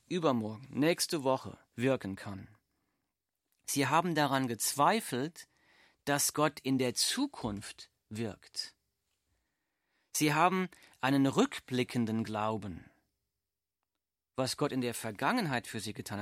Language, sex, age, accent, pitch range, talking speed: German, male, 40-59, German, 115-150 Hz, 105 wpm